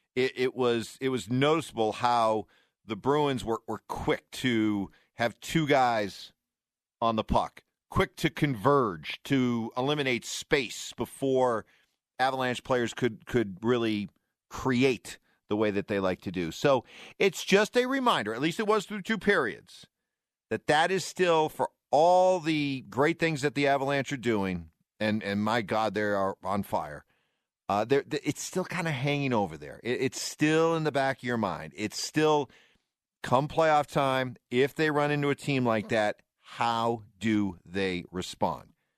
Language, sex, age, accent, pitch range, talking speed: English, male, 50-69, American, 110-155 Hz, 170 wpm